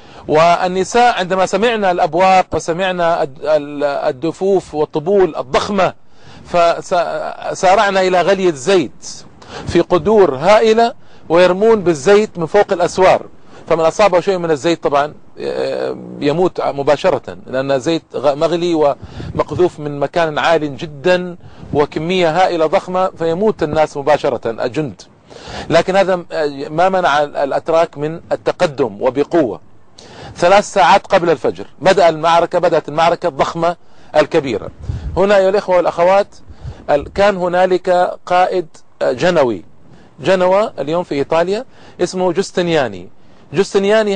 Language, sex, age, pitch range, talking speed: Arabic, male, 40-59, 155-190 Hz, 105 wpm